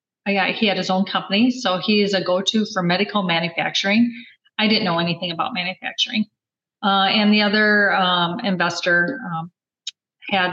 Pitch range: 180-225 Hz